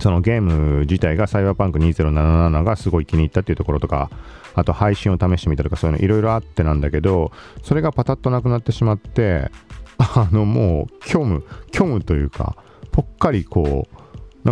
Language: Japanese